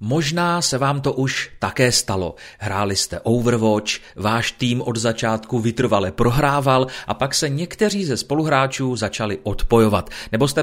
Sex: male